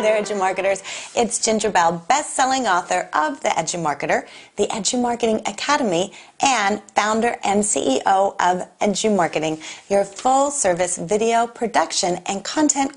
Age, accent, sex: 30-49, American, female